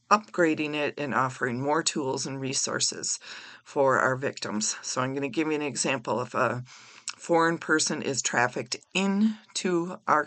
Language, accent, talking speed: English, American, 160 wpm